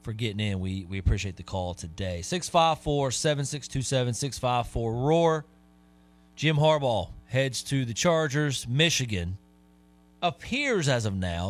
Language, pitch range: English, 90-130 Hz